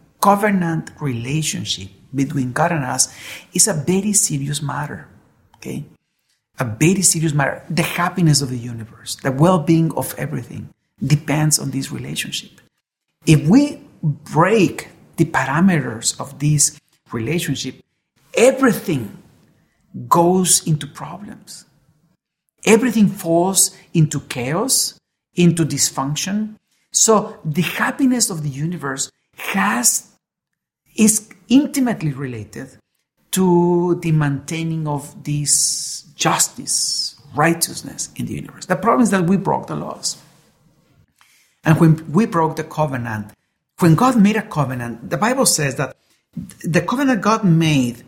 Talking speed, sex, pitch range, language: 115 wpm, male, 145-185 Hz, English